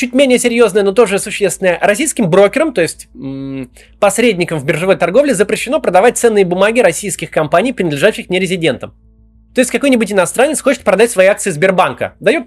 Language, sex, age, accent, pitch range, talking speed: Russian, male, 20-39, native, 180-275 Hz, 155 wpm